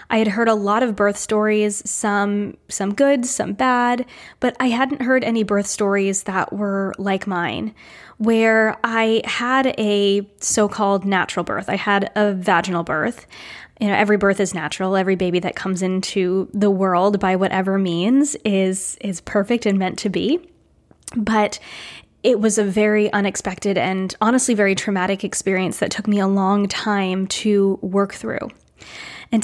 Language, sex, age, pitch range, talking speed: English, female, 20-39, 195-220 Hz, 165 wpm